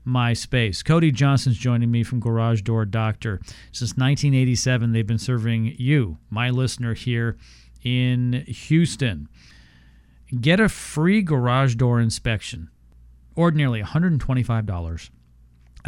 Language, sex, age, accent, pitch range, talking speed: English, male, 40-59, American, 105-135 Hz, 110 wpm